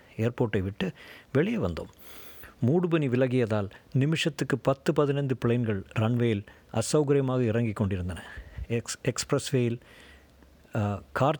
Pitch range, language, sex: 105-130 Hz, Tamil, male